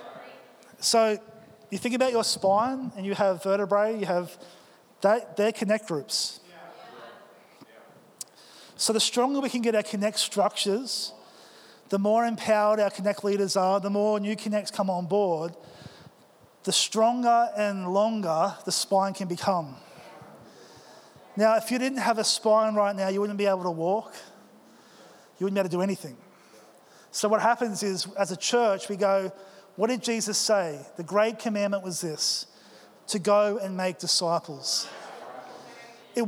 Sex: male